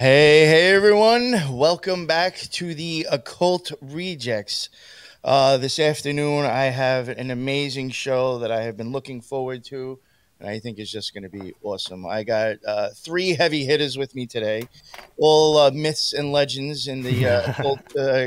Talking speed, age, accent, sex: 170 wpm, 20-39, American, male